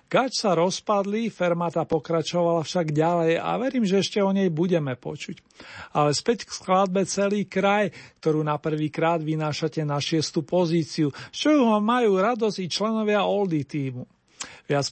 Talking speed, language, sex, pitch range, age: 155 wpm, Slovak, male, 155-190 Hz, 50-69